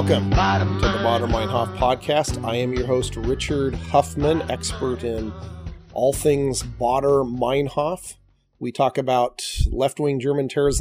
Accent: American